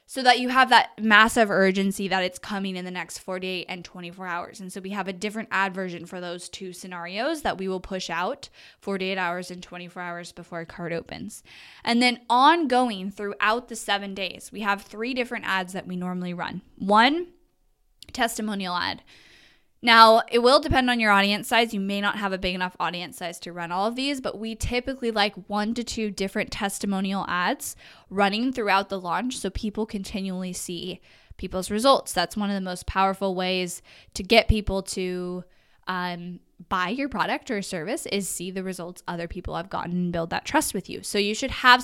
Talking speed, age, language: 200 wpm, 10-29, English